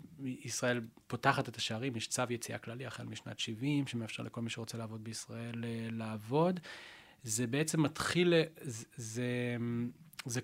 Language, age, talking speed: Hebrew, 30-49, 145 wpm